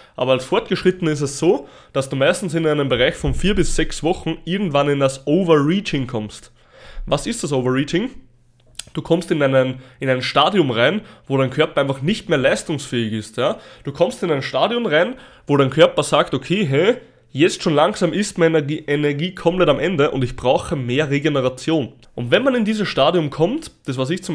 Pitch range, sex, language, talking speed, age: 135-175 Hz, male, German, 200 wpm, 20-39